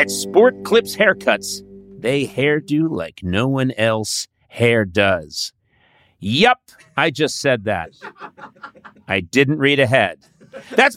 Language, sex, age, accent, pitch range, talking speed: English, male, 40-59, American, 150-240 Hz, 120 wpm